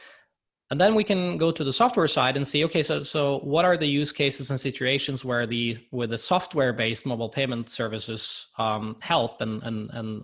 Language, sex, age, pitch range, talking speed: English, male, 20-39, 120-150 Hz, 200 wpm